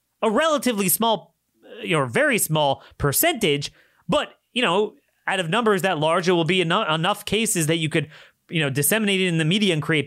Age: 30-49